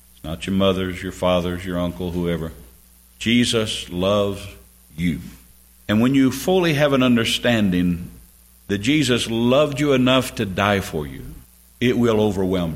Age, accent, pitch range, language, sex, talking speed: 60-79, American, 80-120 Hz, English, male, 140 wpm